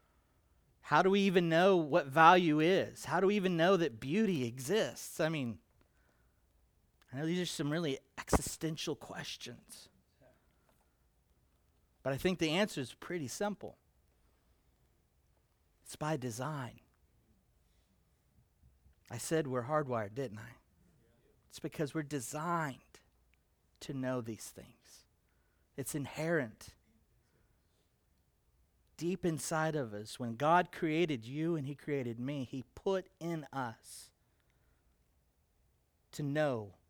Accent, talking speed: American, 115 wpm